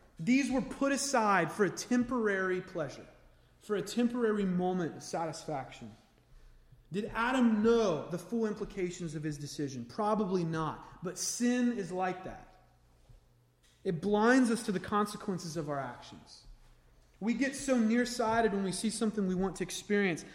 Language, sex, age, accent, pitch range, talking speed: English, male, 30-49, American, 155-215 Hz, 150 wpm